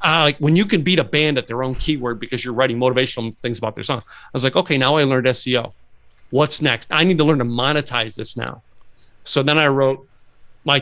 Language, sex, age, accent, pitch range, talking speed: English, male, 40-59, American, 115-140 Hz, 240 wpm